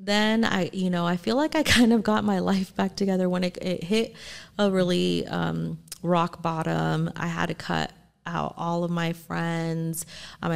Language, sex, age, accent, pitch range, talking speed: English, female, 30-49, American, 155-190 Hz, 195 wpm